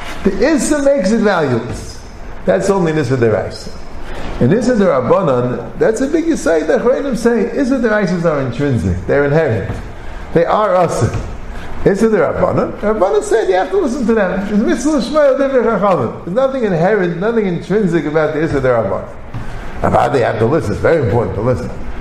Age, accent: 50-69, American